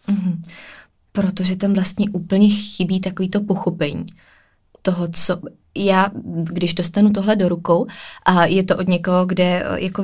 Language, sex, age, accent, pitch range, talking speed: Czech, female, 20-39, native, 165-185 Hz, 130 wpm